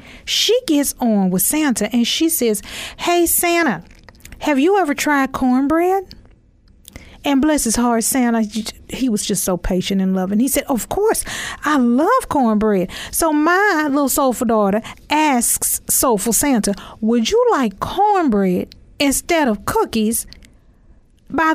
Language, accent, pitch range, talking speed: English, American, 225-315 Hz, 140 wpm